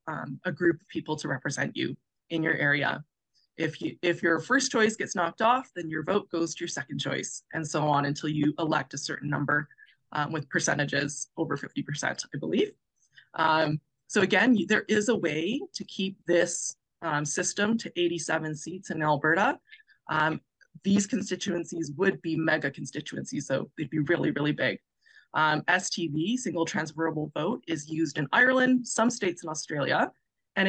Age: 20-39